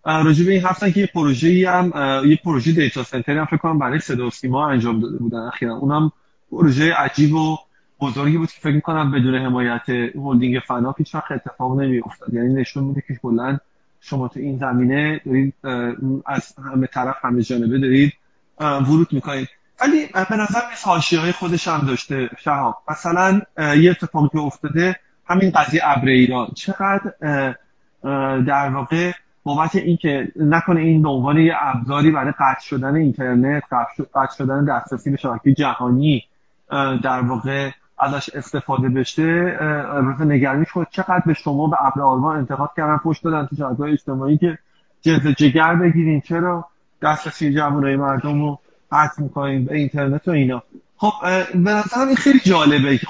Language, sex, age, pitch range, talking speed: Persian, male, 30-49, 135-165 Hz, 145 wpm